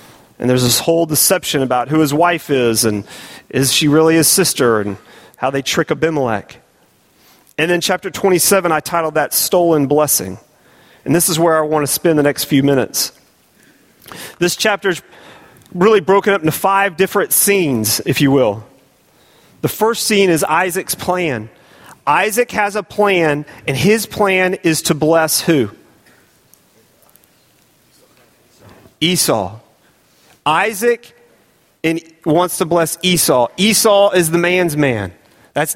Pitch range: 150-195 Hz